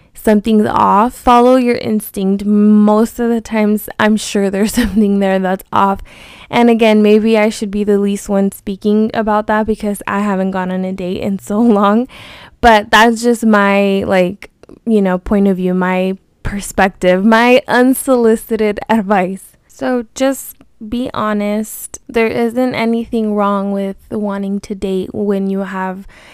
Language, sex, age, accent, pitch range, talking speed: English, female, 10-29, American, 195-225 Hz, 155 wpm